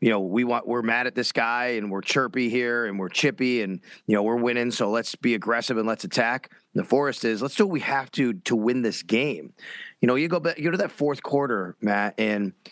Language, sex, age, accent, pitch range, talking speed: English, male, 30-49, American, 115-145 Hz, 260 wpm